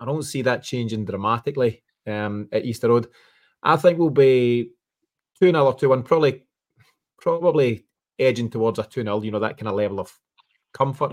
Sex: male